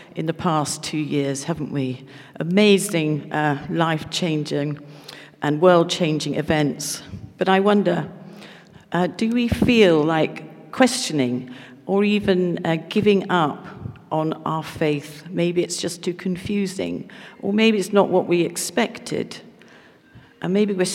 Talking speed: 130 wpm